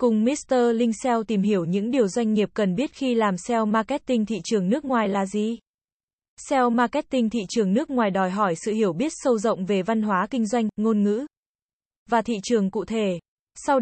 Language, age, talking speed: Vietnamese, 20-39, 210 wpm